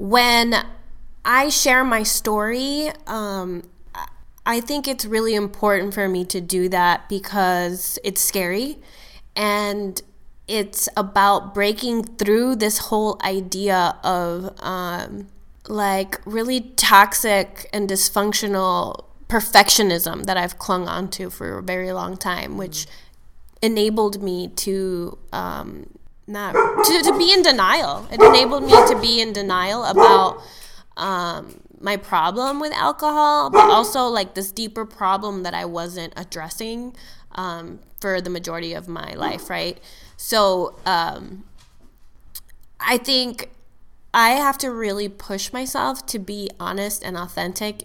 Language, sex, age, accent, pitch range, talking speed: English, female, 10-29, American, 185-225 Hz, 125 wpm